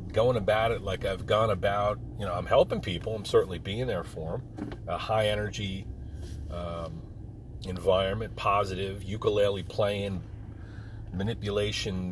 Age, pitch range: 40-59, 95-105 Hz